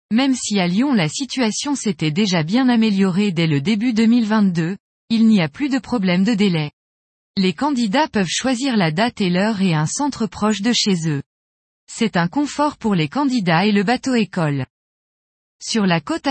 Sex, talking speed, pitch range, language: female, 185 wpm, 180-245 Hz, French